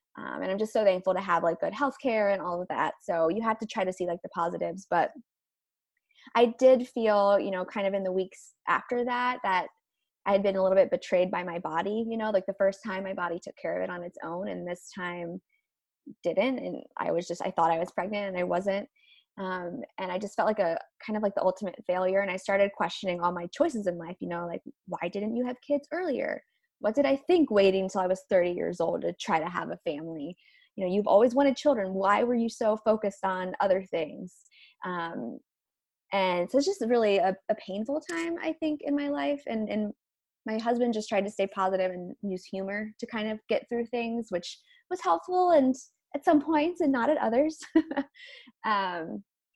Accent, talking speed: American, 225 wpm